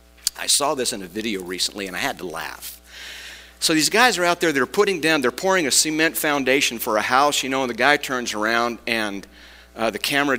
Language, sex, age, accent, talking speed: English, male, 50-69, American, 230 wpm